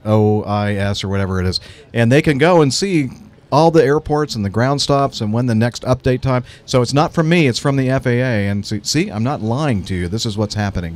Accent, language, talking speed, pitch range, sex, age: American, English, 245 wpm, 100-125 Hz, male, 50-69